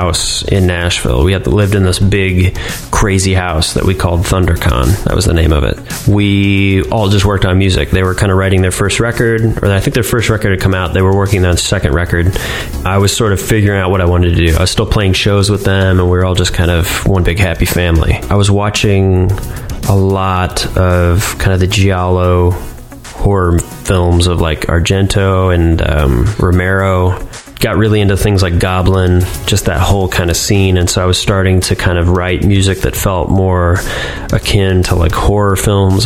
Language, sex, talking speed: English, male, 210 wpm